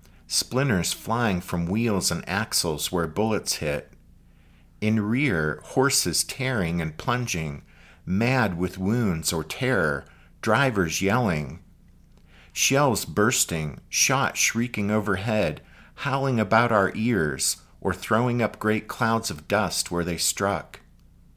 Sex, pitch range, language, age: male, 80-110 Hz, English, 50-69